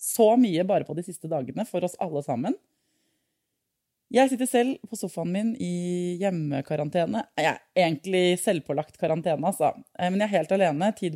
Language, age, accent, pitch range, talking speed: English, 20-39, Swedish, 160-225 Hz, 160 wpm